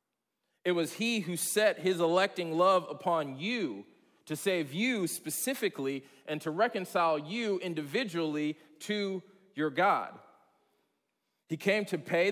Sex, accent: male, American